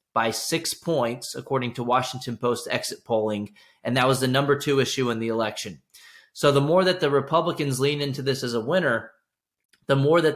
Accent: American